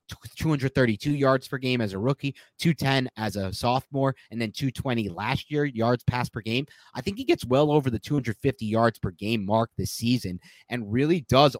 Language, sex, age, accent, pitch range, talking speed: English, male, 30-49, American, 105-135 Hz, 190 wpm